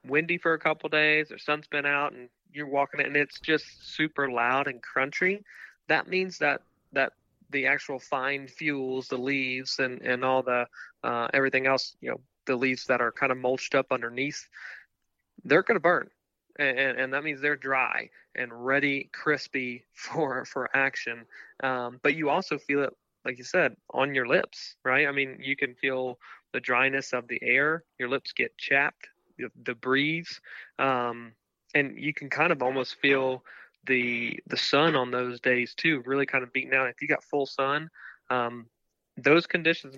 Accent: American